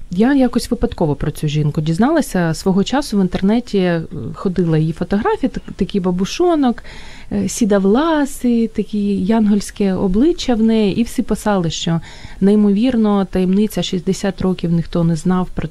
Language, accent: Ukrainian, native